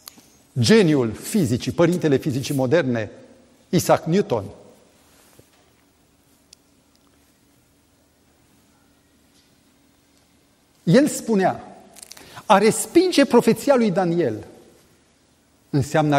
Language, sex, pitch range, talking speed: Romanian, male, 125-180 Hz, 55 wpm